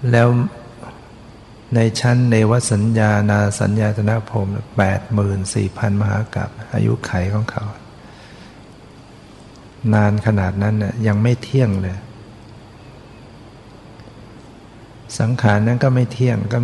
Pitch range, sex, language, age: 105-120 Hz, male, Thai, 60-79